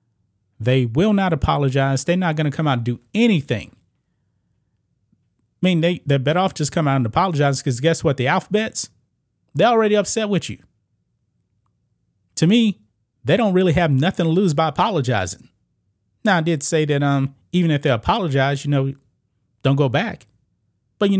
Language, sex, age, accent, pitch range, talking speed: English, male, 30-49, American, 115-160 Hz, 175 wpm